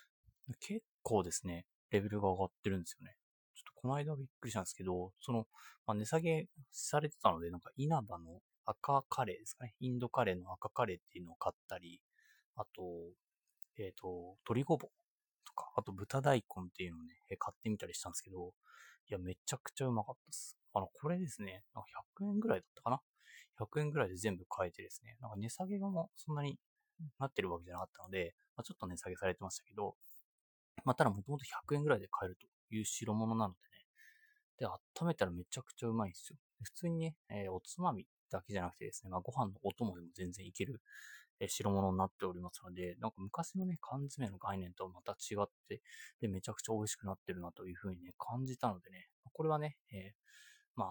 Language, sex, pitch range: Japanese, male, 95-145 Hz